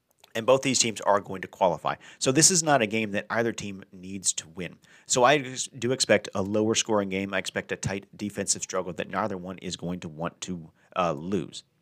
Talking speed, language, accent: 225 wpm, English, American